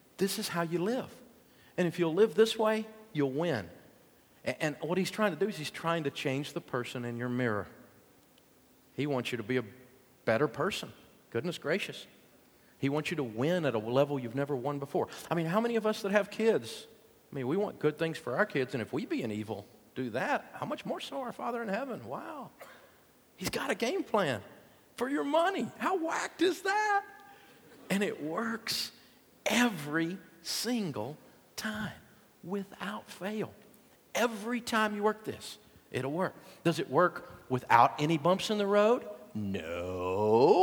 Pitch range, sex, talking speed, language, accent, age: 130-215 Hz, male, 185 wpm, English, American, 50-69